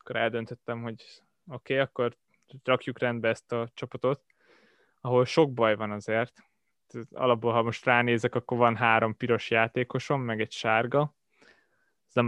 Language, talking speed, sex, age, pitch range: Hungarian, 145 wpm, male, 20-39, 115-140 Hz